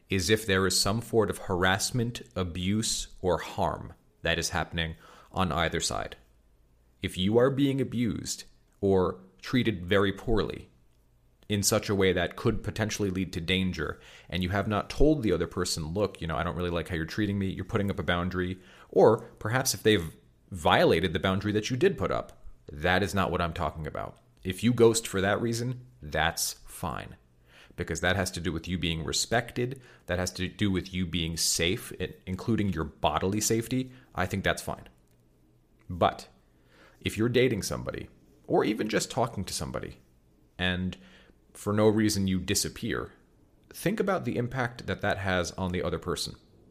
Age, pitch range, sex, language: 40-59, 85-110 Hz, male, English